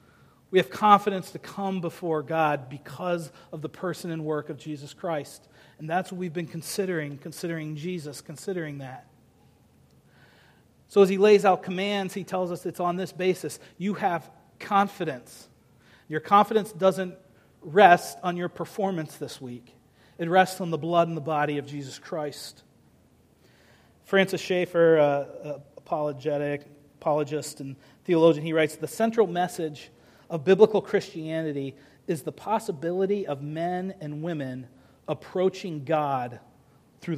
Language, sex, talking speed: English, male, 140 wpm